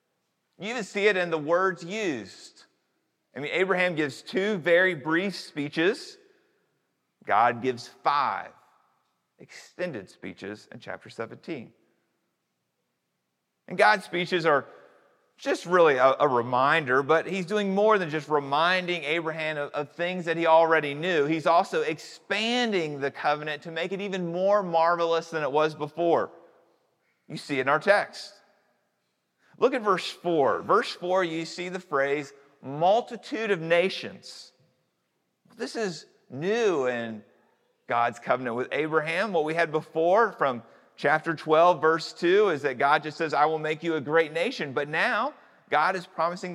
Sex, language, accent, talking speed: male, English, American, 150 wpm